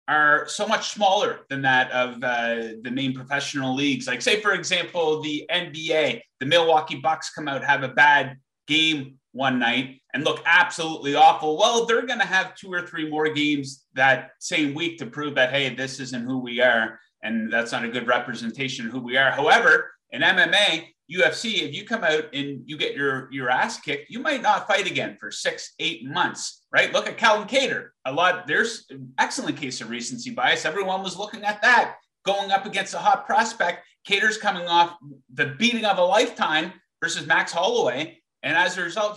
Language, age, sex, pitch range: English, 30-49, male, 135-205 Hz